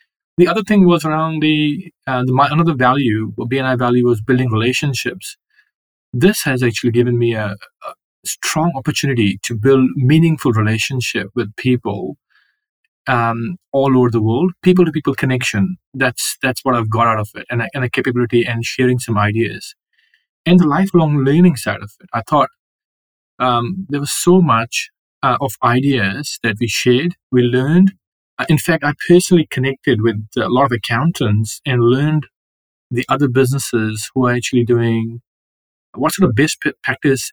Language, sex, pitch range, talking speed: English, male, 115-145 Hz, 160 wpm